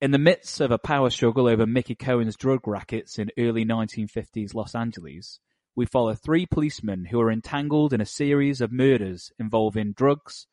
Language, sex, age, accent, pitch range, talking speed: English, male, 30-49, British, 110-145 Hz, 175 wpm